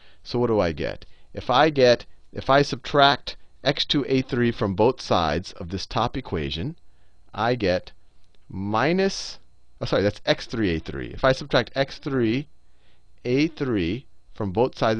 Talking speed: 130 wpm